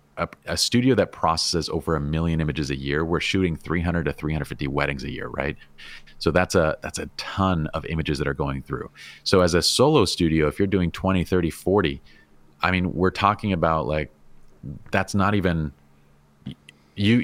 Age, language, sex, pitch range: 30-49, English, male, 75-90 Hz